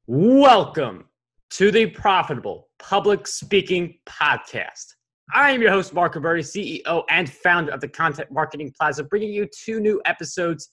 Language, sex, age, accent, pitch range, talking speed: English, male, 20-39, American, 135-185 Hz, 145 wpm